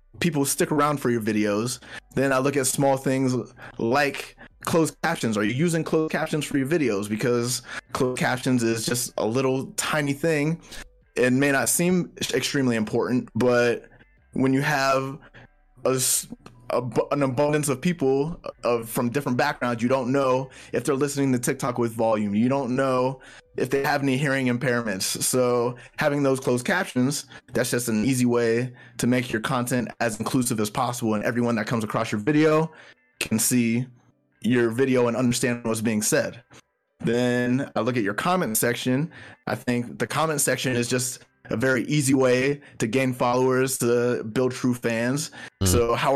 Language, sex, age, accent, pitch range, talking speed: English, male, 20-39, American, 120-140 Hz, 170 wpm